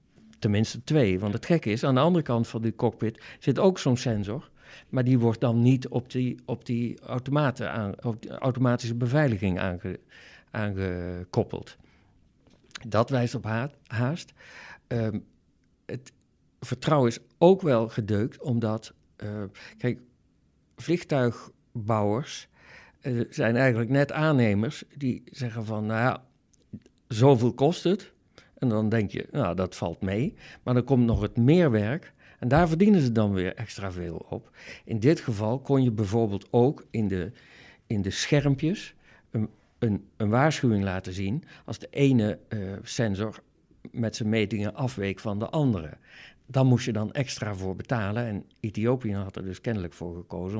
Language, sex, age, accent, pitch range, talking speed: Dutch, male, 60-79, Dutch, 105-130 Hz, 145 wpm